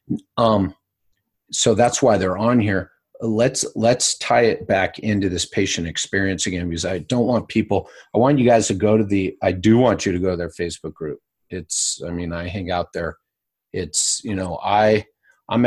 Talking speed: 200 wpm